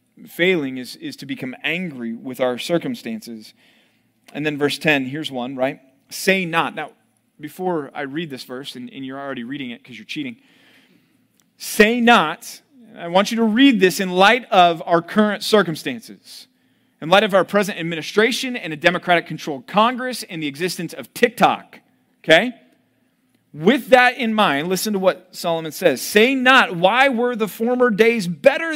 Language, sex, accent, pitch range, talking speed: English, male, American, 140-225 Hz, 165 wpm